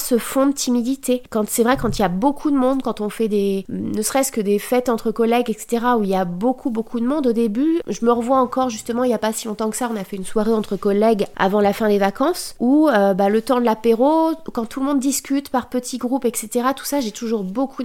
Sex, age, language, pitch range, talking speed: female, 30-49, French, 215-260 Hz, 275 wpm